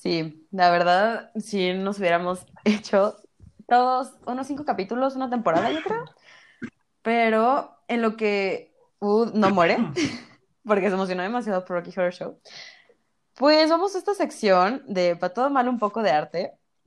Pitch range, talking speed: 180-250 Hz, 150 wpm